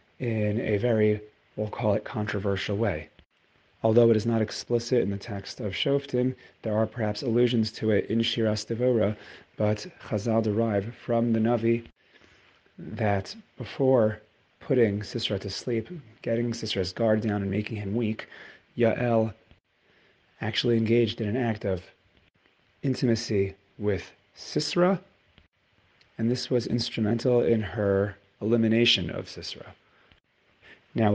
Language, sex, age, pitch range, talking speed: English, male, 30-49, 105-120 Hz, 130 wpm